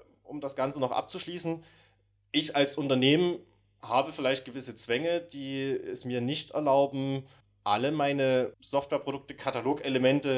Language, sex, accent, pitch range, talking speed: German, male, German, 100-135 Hz, 120 wpm